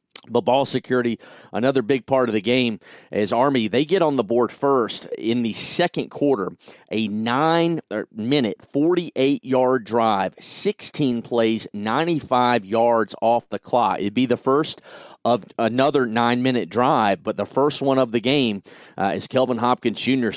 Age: 40-59